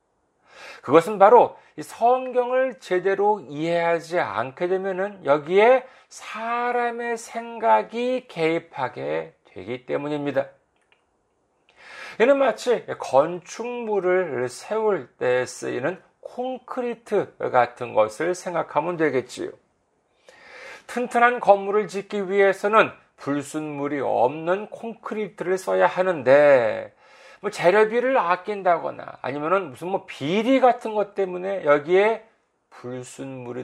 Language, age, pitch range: Korean, 40-59, 165-240 Hz